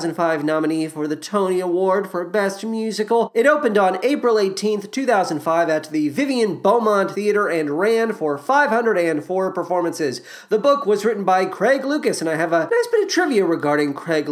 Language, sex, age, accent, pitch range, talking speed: English, male, 30-49, American, 160-250 Hz, 170 wpm